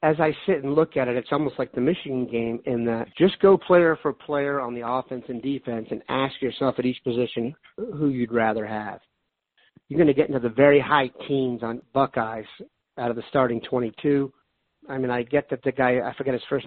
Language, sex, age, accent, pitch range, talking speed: English, male, 50-69, American, 125-145 Hz, 225 wpm